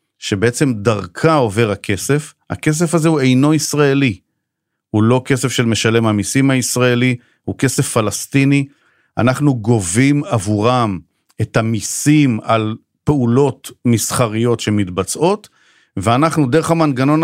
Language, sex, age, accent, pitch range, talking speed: Hebrew, male, 40-59, native, 100-140 Hz, 110 wpm